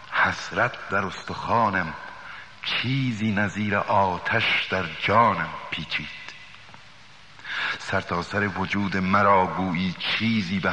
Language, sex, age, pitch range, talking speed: Persian, male, 60-79, 90-105 Hz, 85 wpm